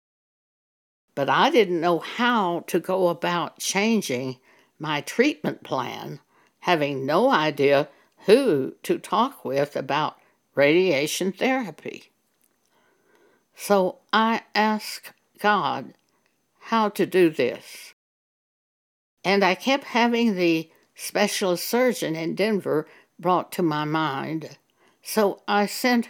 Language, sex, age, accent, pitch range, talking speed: English, female, 60-79, American, 165-225 Hz, 105 wpm